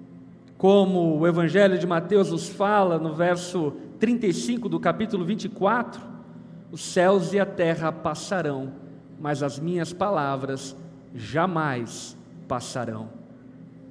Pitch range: 170-245 Hz